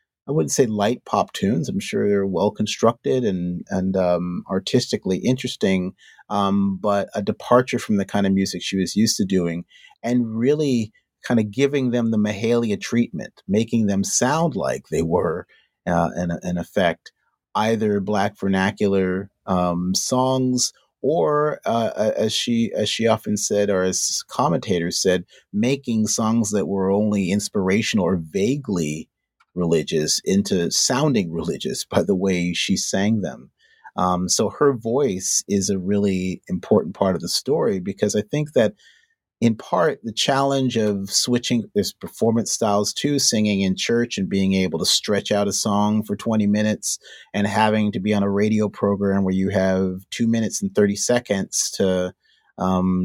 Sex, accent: male, American